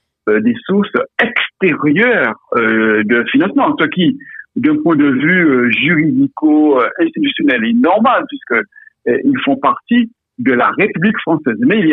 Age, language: 60-79, French